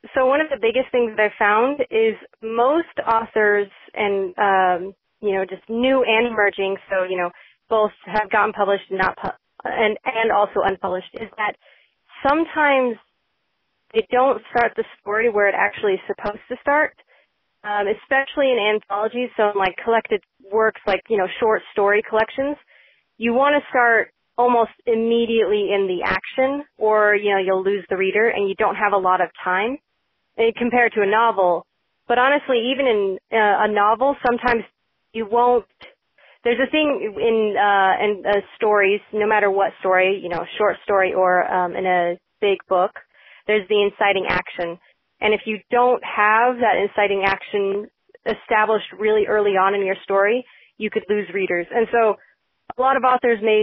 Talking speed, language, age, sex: 170 wpm, English, 30-49, female